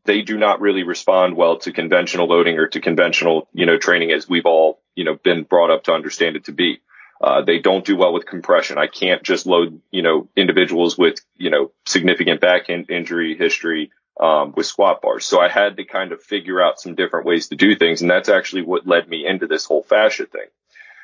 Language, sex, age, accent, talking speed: English, male, 30-49, American, 225 wpm